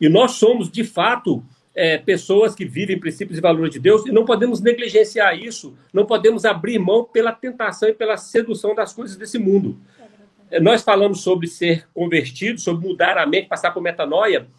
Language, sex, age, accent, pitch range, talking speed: Portuguese, male, 50-69, Brazilian, 165-215 Hz, 185 wpm